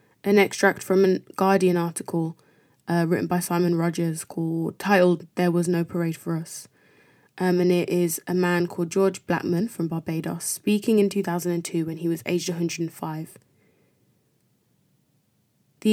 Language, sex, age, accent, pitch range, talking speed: English, female, 20-39, British, 165-195 Hz, 145 wpm